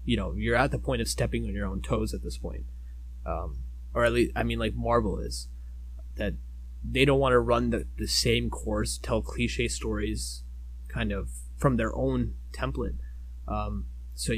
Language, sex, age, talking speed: English, male, 20-39, 190 wpm